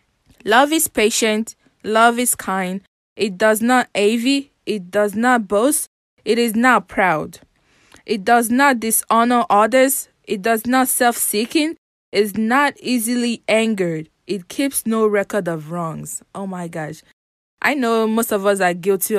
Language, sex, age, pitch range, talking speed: English, female, 20-39, 185-230 Hz, 150 wpm